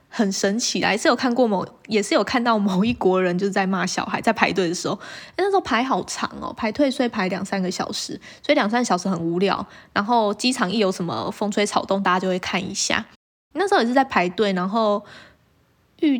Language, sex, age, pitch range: Chinese, female, 20-39, 195-270 Hz